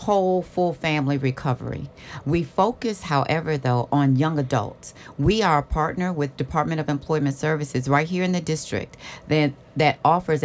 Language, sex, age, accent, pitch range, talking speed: English, female, 50-69, American, 140-170 Hz, 160 wpm